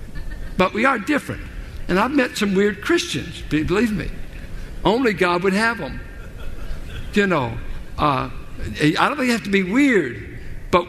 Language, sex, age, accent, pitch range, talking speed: English, male, 60-79, American, 135-215 Hz, 160 wpm